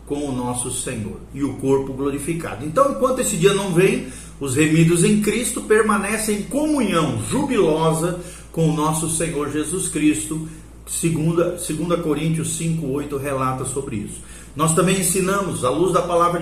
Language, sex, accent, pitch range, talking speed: Portuguese, male, Brazilian, 145-195 Hz, 155 wpm